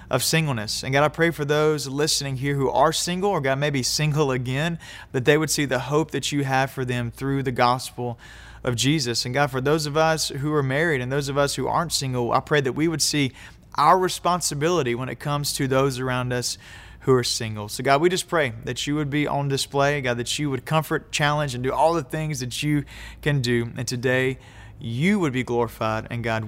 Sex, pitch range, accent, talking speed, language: male, 125-160 Hz, American, 230 wpm, English